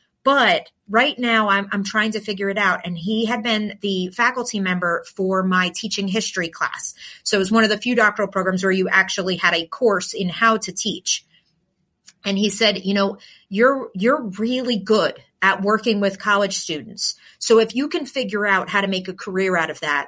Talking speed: 205 wpm